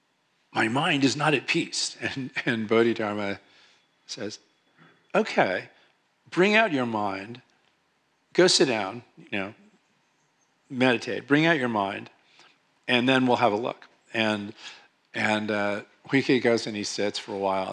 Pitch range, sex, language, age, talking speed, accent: 100-125 Hz, male, English, 50-69, 140 wpm, American